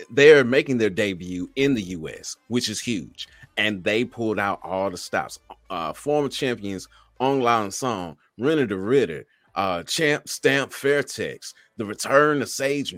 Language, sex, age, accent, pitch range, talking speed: English, male, 30-49, American, 90-120 Hz, 155 wpm